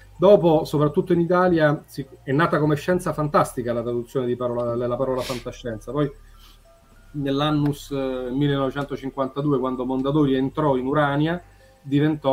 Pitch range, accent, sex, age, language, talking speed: 125-150 Hz, native, male, 30-49, Italian, 115 wpm